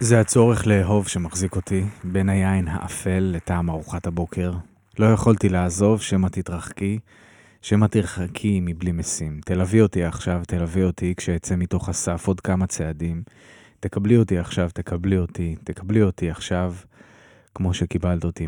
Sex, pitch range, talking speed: male, 90-100 Hz, 135 wpm